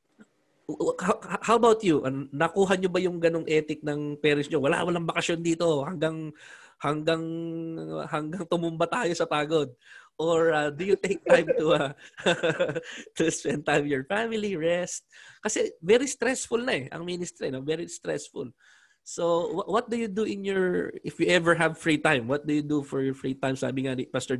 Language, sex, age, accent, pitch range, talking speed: Filipino, male, 20-39, native, 135-170 Hz, 175 wpm